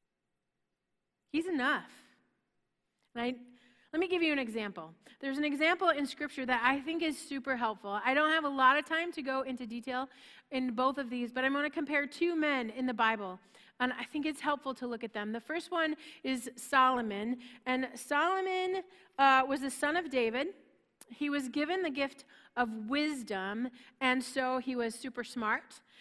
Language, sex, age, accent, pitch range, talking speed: English, female, 30-49, American, 235-295 Hz, 180 wpm